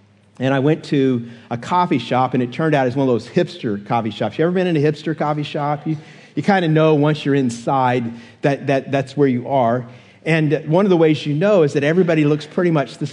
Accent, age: American, 50-69